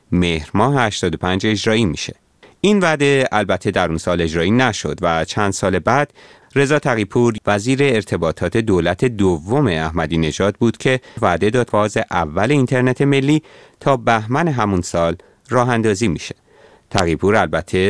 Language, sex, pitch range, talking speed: Persian, male, 85-115 Hz, 135 wpm